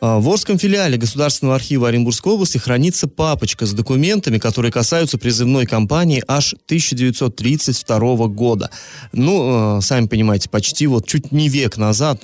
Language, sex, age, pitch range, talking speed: Russian, male, 20-39, 110-145 Hz, 130 wpm